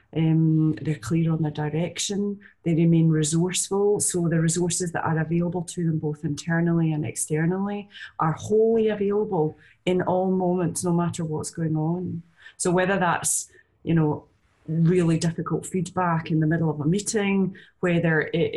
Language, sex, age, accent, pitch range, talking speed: English, female, 30-49, British, 160-185 Hz, 155 wpm